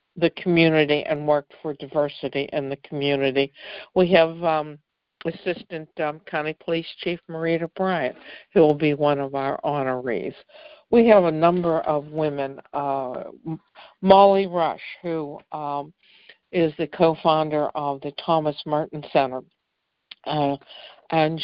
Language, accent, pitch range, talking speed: English, American, 145-170 Hz, 130 wpm